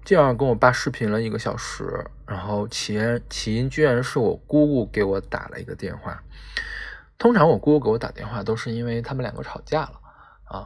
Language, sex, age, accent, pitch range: Chinese, male, 20-39, native, 100-135 Hz